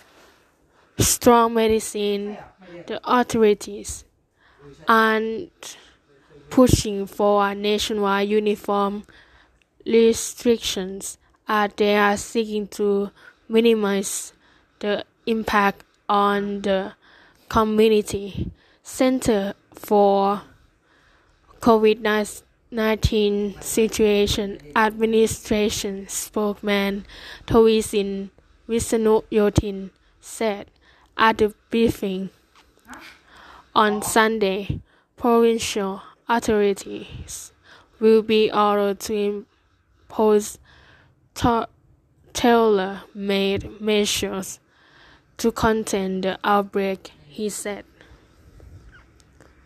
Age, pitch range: 10-29, 200-220 Hz